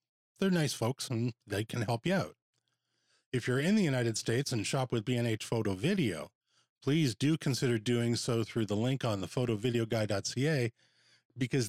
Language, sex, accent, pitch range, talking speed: English, male, American, 115-145 Hz, 170 wpm